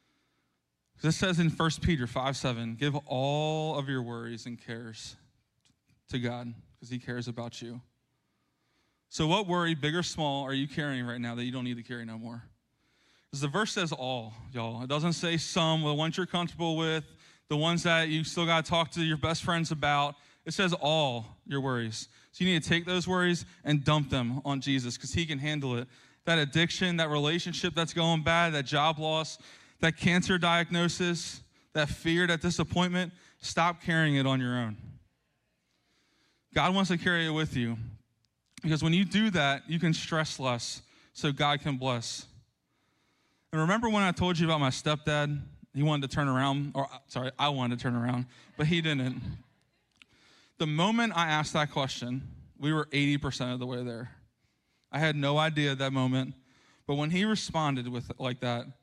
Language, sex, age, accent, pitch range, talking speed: English, male, 20-39, American, 125-165 Hz, 185 wpm